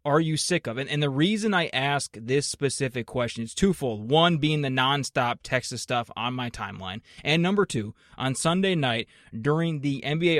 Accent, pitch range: American, 125-155 Hz